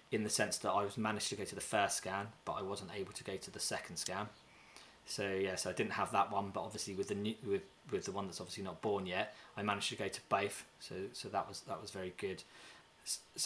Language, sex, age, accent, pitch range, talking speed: English, male, 20-39, British, 100-120 Hz, 265 wpm